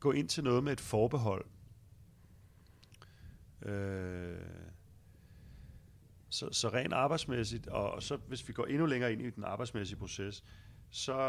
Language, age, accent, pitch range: Danish, 40-59, native, 95-125 Hz